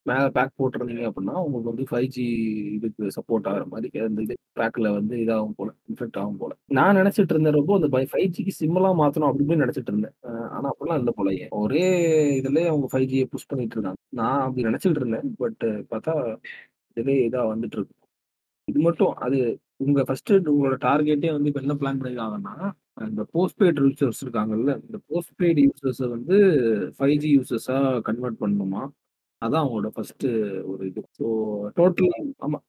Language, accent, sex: Tamil, native, male